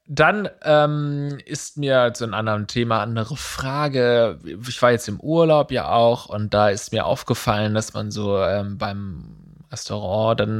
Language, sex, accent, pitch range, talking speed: German, male, German, 115-145 Hz, 175 wpm